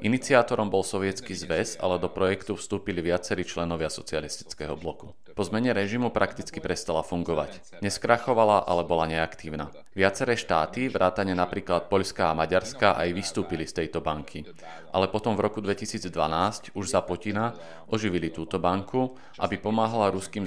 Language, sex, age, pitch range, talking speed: Slovak, male, 40-59, 85-105 Hz, 140 wpm